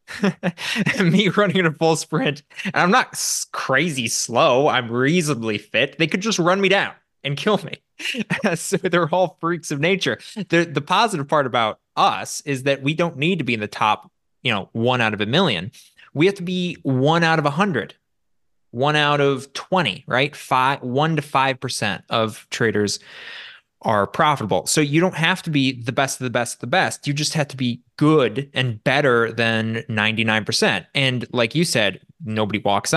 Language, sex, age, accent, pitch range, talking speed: English, male, 20-39, American, 120-170 Hz, 195 wpm